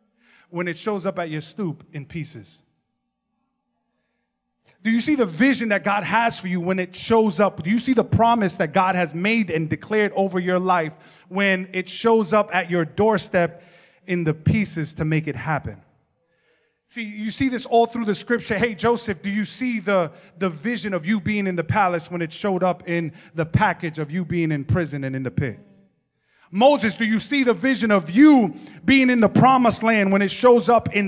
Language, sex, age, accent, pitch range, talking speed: English, male, 30-49, American, 180-245 Hz, 205 wpm